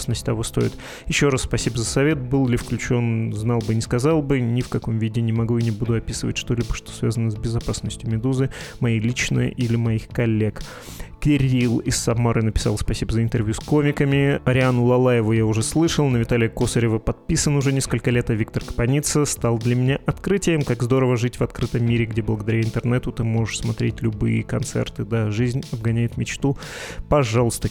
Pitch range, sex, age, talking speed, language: 115-130 Hz, male, 20-39, 180 wpm, Russian